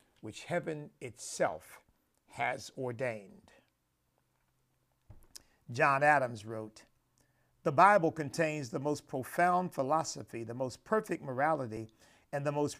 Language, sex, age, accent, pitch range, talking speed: English, male, 50-69, American, 130-170 Hz, 105 wpm